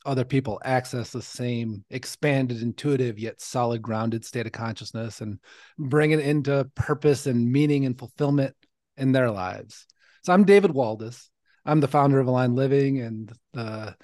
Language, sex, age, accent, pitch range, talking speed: English, male, 30-49, American, 130-170 Hz, 160 wpm